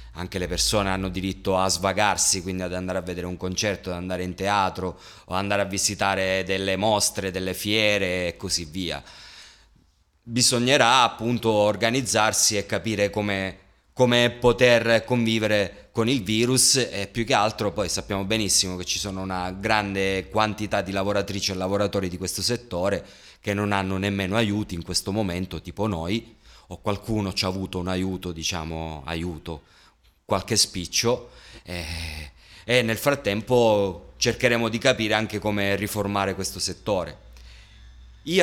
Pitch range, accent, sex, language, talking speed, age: 95-115 Hz, native, male, Italian, 150 wpm, 30-49